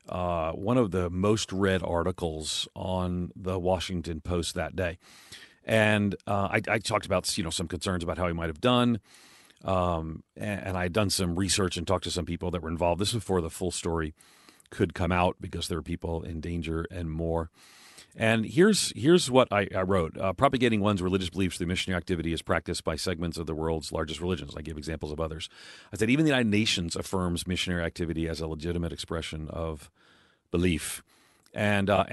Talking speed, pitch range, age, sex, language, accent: 200 wpm, 85-100 Hz, 40-59, male, English, American